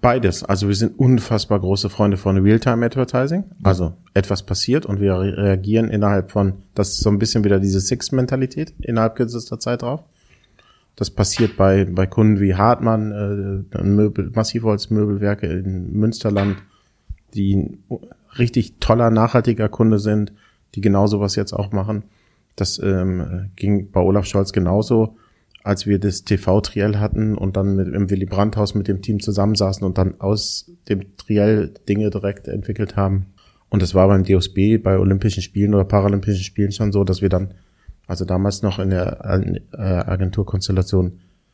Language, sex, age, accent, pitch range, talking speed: German, male, 30-49, German, 95-110 Hz, 155 wpm